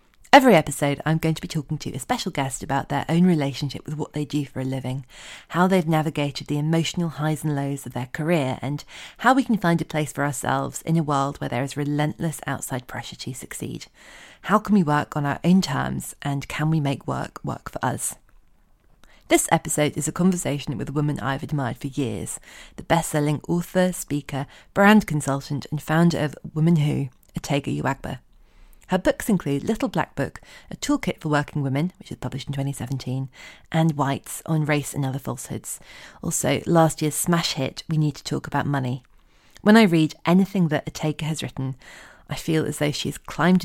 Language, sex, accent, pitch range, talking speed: English, female, British, 140-165 Hz, 200 wpm